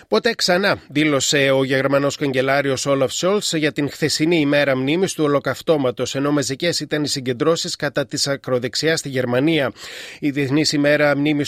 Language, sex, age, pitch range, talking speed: Greek, male, 30-49, 135-175 Hz, 150 wpm